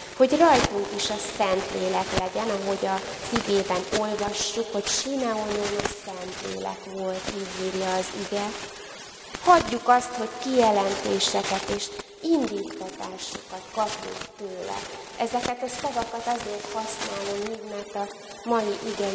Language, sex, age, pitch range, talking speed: Hungarian, female, 20-39, 195-220 Hz, 115 wpm